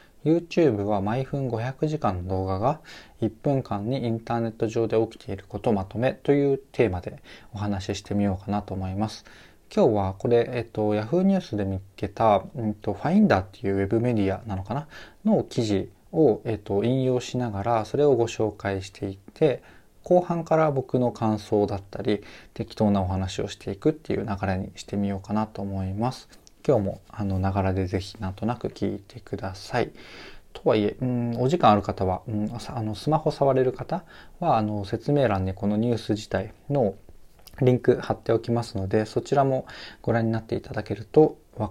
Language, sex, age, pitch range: Japanese, male, 20-39, 100-125 Hz